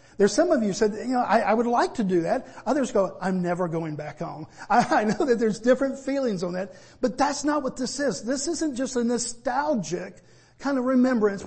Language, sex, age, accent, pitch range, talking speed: English, male, 50-69, American, 155-235 Hz, 230 wpm